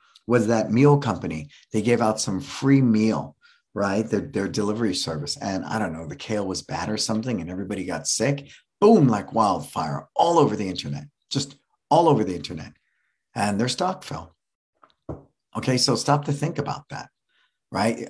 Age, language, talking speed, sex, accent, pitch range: 50-69, English, 175 wpm, male, American, 95-135 Hz